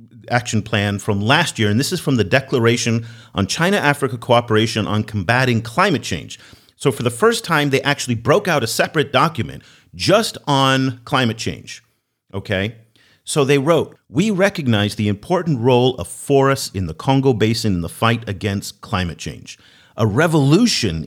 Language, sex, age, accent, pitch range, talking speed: English, male, 40-59, American, 105-130 Hz, 160 wpm